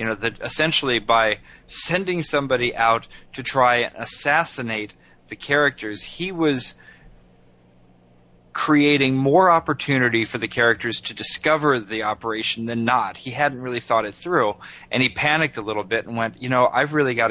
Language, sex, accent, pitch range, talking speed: English, male, American, 105-130 Hz, 165 wpm